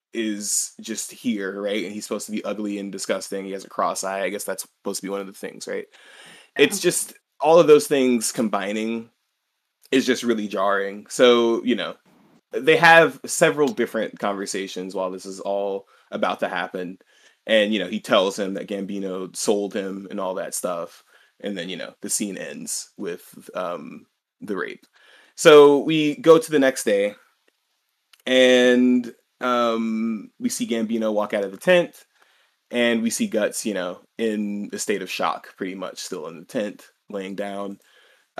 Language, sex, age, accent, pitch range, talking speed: English, male, 20-39, American, 100-150 Hz, 180 wpm